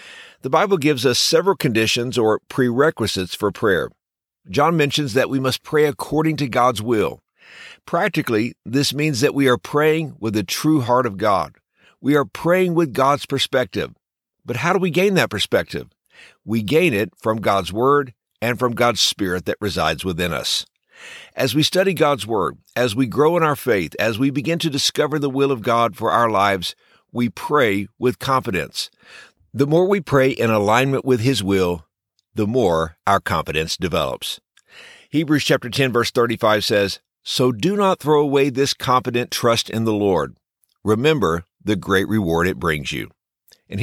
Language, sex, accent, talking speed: English, male, American, 175 wpm